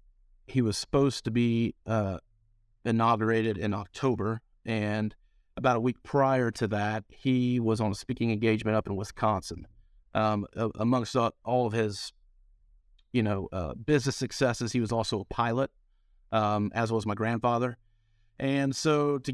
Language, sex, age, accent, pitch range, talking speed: English, male, 40-59, American, 105-125 Hz, 150 wpm